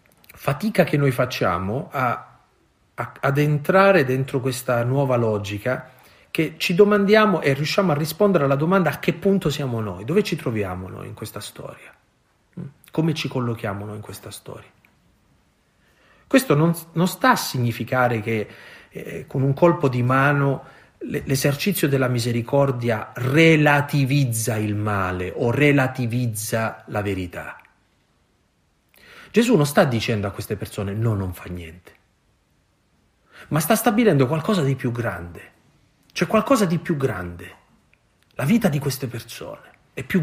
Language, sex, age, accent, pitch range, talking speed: Italian, male, 40-59, native, 115-160 Hz, 135 wpm